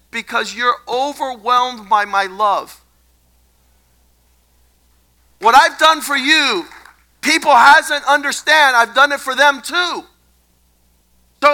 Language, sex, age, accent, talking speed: English, male, 50-69, American, 110 wpm